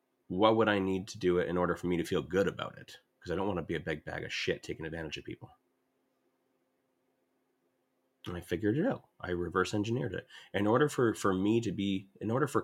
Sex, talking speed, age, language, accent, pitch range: male, 235 wpm, 30-49, English, American, 90-110 Hz